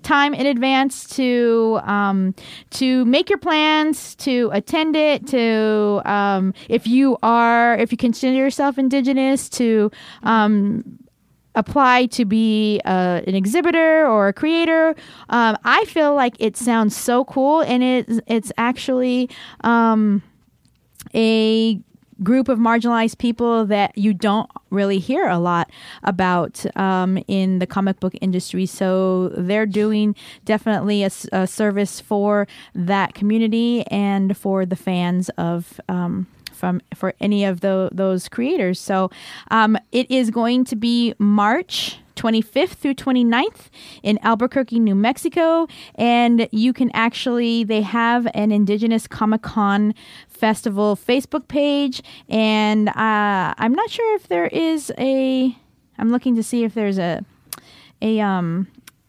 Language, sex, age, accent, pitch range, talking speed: English, female, 20-39, American, 205-255 Hz, 135 wpm